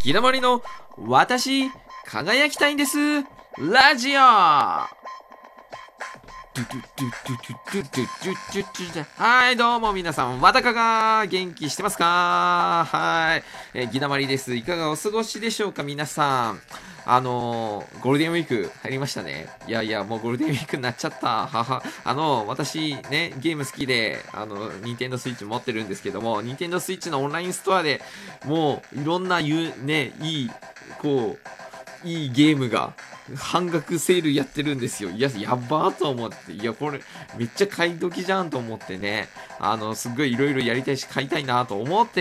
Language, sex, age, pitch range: Japanese, male, 20-39, 125-175 Hz